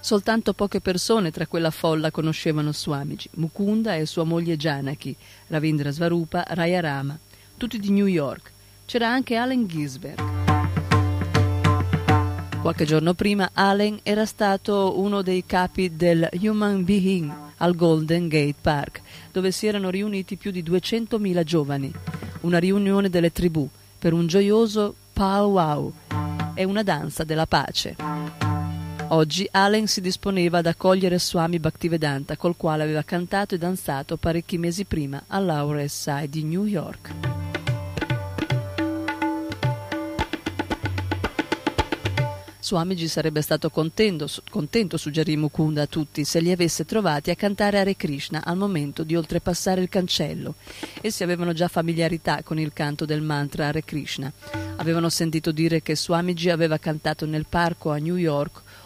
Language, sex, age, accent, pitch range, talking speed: Italian, female, 40-59, native, 150-190 Hz, 135 wpm